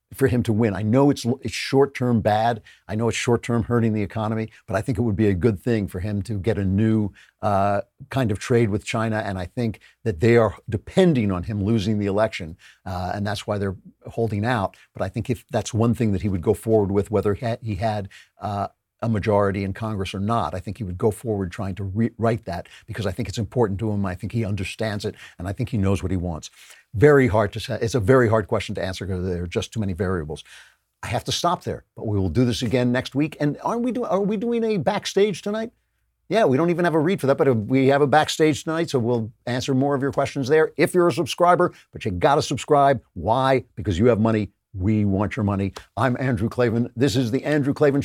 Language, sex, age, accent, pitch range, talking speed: English, male, 50-69, American, 100-135 Hz, 250 wpm